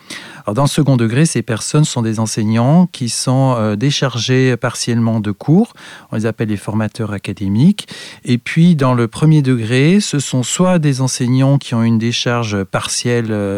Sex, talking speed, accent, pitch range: male, 170 wpm, French, 115-145 Hz